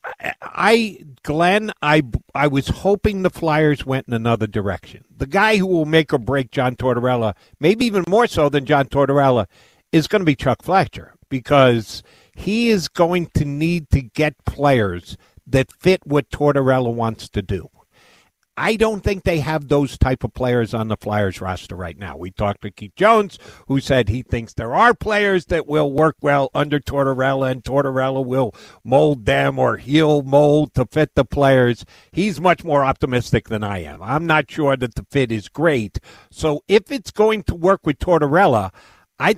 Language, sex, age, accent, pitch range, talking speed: English, male, 60-79, American, 125-165 Hz, 180 wpm